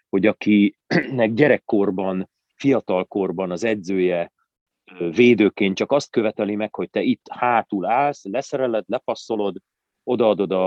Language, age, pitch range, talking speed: Hungarian, 40-59, 100-130 Hz, 105 wpm